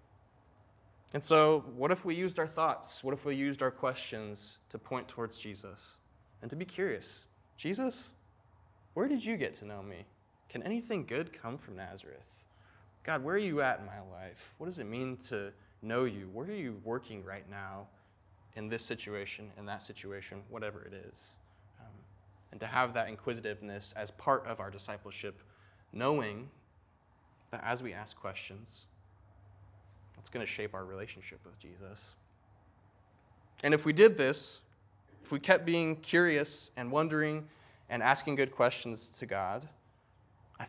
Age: 20-39